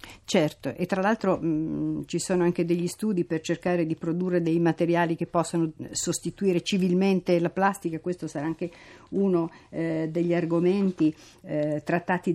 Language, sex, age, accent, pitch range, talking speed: Italian, female, 50-69, native, 160-180 Hz, 150 wpm